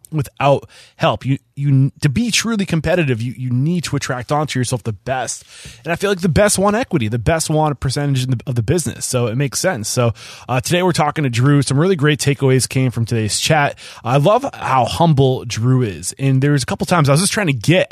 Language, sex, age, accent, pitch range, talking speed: English, male, 20-39, American, 120-150 Hz, 235 wpm